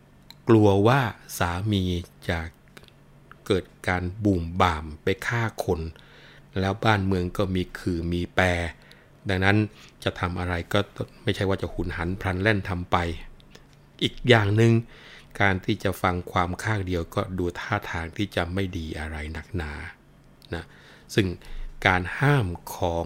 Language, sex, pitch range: Thai, male, 85-105 Hz